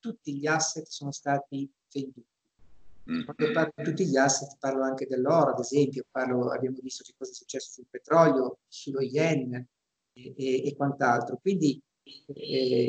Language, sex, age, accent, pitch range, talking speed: Italian, male, 50-69, native, 130-160 Hz, 155 wpm